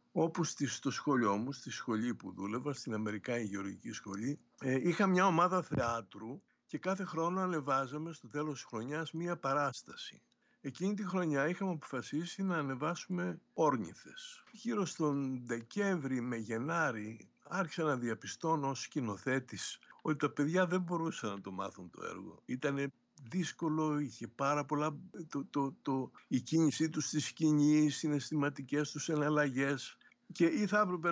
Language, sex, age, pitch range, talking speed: Greek, male, 60-79, 125-175 Hz, 140 wpm